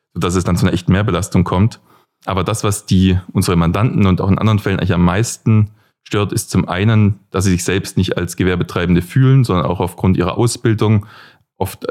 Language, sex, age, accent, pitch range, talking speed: German, male, 20-39, German, 90-110 Hz, 200 wpm